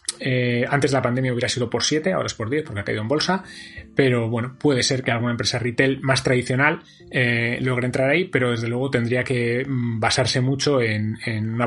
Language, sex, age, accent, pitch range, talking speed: Spanish, male, 20-39, Spanish, 115-135 Hz, 210 wpm